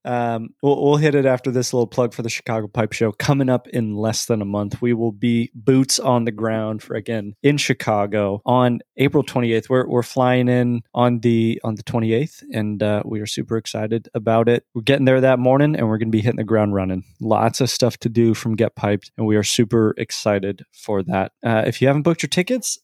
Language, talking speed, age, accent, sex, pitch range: English, 230 wpm, 20-39, American, male, 110-130 Hz